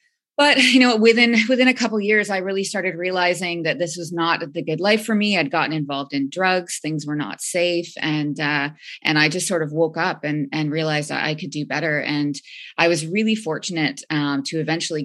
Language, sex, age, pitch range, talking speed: English, female, 20-39, 150-175 Hz, 225 wpm